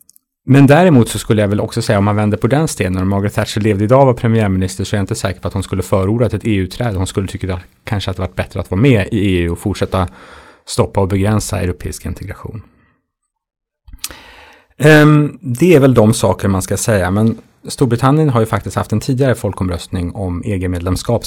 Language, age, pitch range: Swedish, 30-49, 95-115 Hz